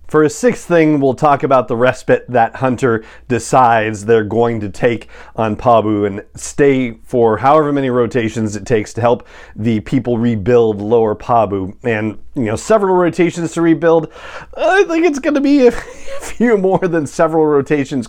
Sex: male